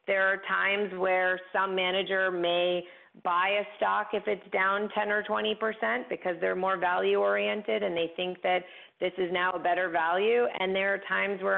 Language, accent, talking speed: English, American, 185 wpm